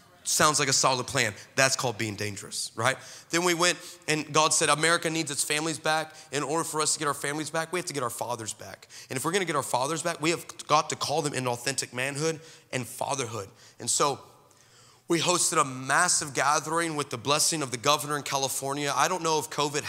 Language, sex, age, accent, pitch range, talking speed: English, male, 30-49, American, 125-160 Hz, 230 wpm